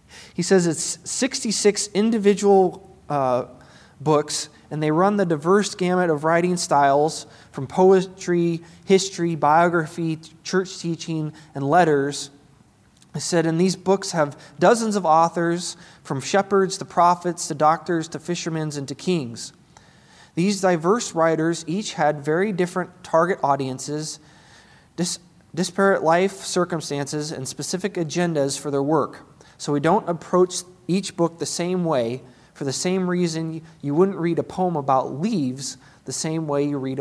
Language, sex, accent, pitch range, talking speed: English, male, American, 145-180 Hz, 140 wpm